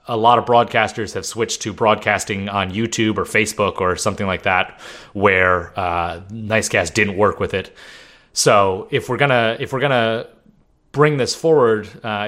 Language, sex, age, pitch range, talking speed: English, male, 30-49, 95-115 Hz, 165 wpm